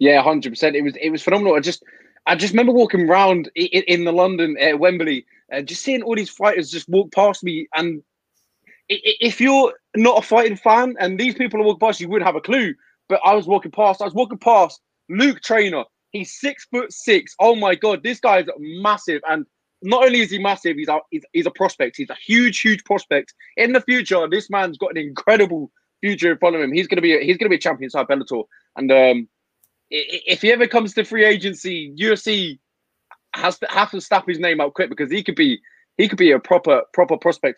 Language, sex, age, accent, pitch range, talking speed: English, male, 20-39, British, 160-225 Hz, 225 wpm